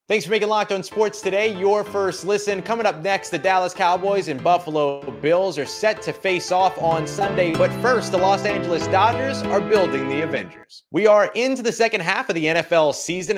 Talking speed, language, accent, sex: 205 wpm, English, American, male